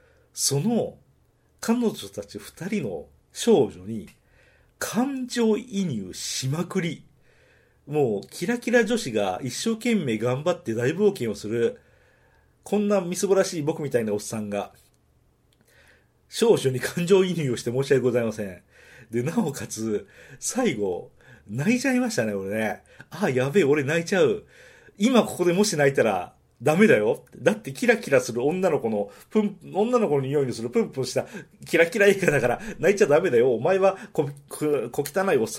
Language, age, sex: Japanese, 40-59, male